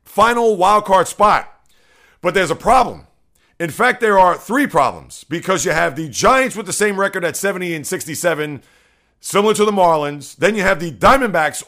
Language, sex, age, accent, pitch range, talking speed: English, male, 40-59, American, 170-210 Hz, 185 wpm